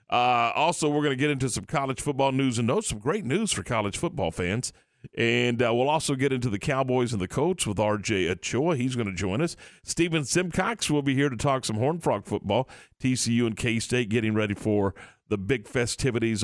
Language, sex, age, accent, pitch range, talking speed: English, male, 50-69, American, 110-145 Hz, 215 wpm